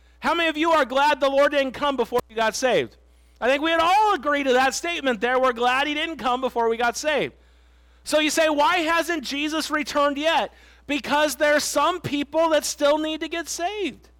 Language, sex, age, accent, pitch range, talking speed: English, male, 40-59, American, 230-300 Hz, 220 wpm